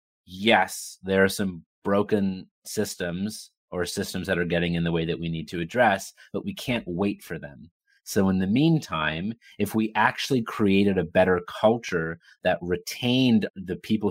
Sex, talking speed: male, 170 wpm